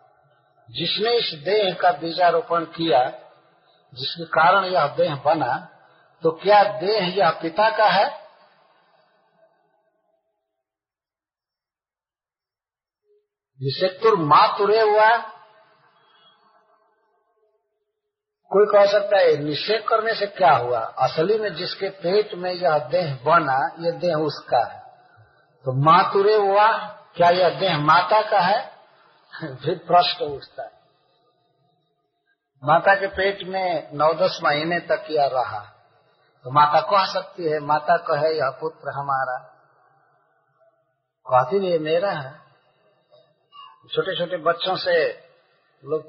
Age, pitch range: 50-69, 155-215 Hz